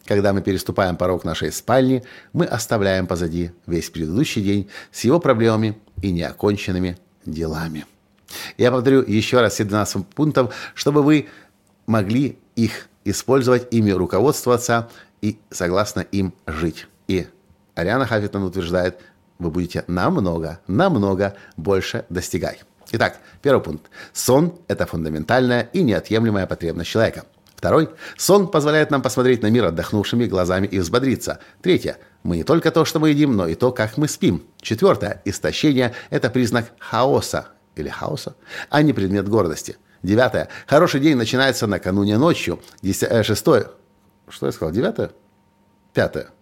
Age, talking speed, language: 50-69, 140 wpm, Russian